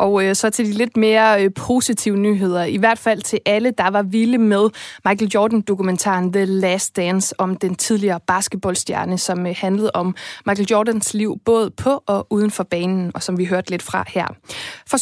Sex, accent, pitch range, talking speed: female, native, 185-225 Hz, 190 wpm